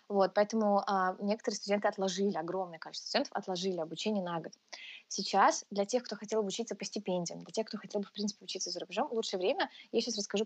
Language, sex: Russian, female